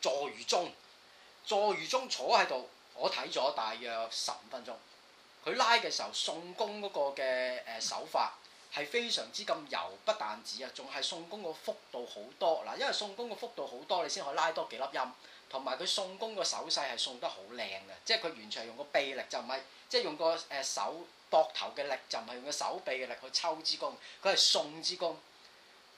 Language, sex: Chinese, male